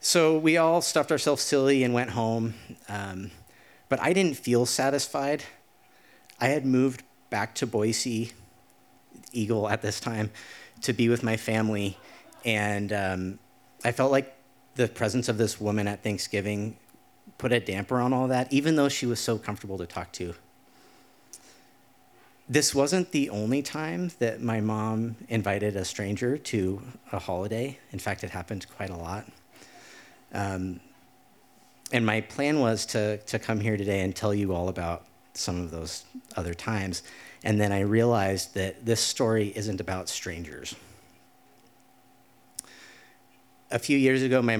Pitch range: 95-125 Hz